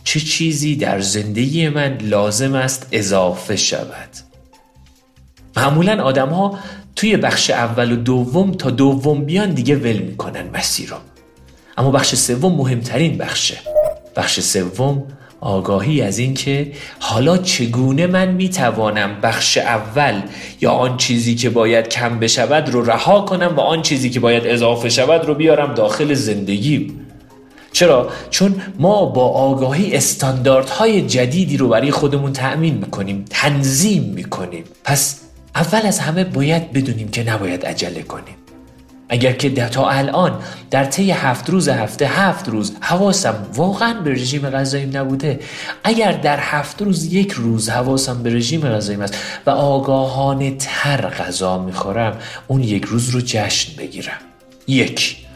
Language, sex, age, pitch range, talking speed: Persian, male, 40-59, 115-150 Hz, 135 wpm